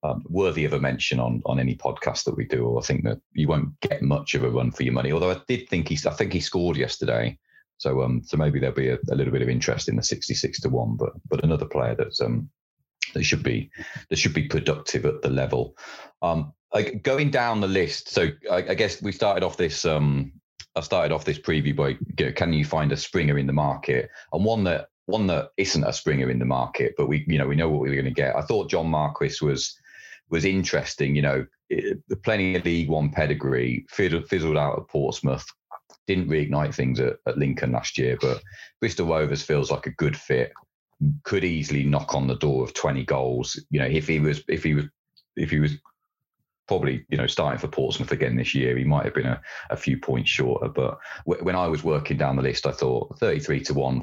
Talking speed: 235 wpm